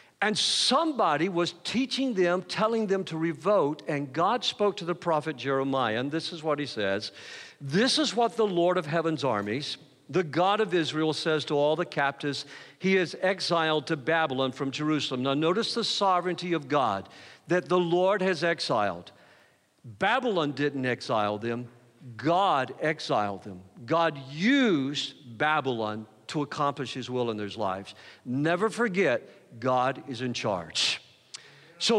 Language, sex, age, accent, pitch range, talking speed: English, male, 50-69, American, 135-195 Hz, 150 wpm